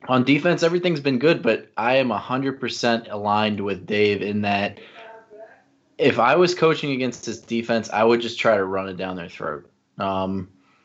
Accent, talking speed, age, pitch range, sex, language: American, 175 wpm, 20-39, 95-115 Hz, male, English